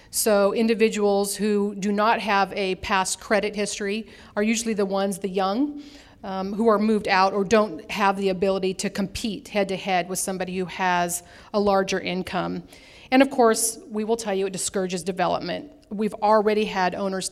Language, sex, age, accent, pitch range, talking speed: English, female, 40-59, American, 185-215 Hz, 175 wpm